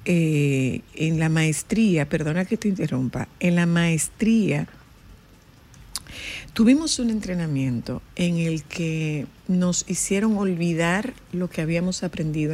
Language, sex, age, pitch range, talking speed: Spanish, female, 50-69, 155-185 Hz, 115 wpm